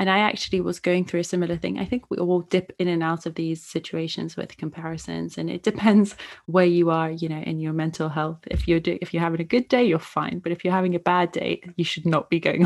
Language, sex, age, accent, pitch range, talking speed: English, female, 20-39, British, 165-210 Hz, 270 wpm